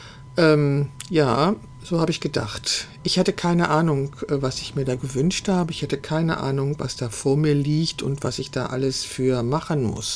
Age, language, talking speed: 50-69, German, 195 wpm